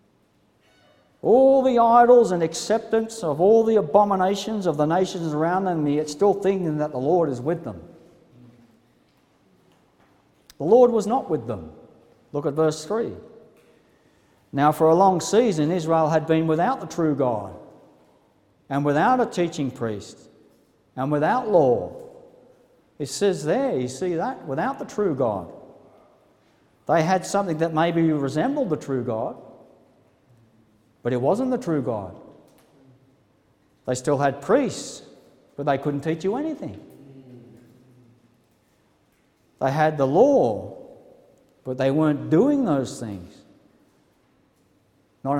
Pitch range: 135-210 Hz